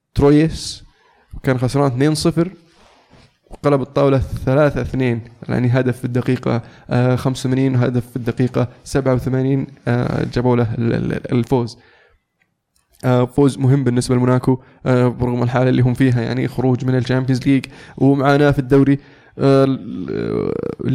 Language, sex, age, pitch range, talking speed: Arabic, male, 20-39, 125-140 Hz, 115 wpm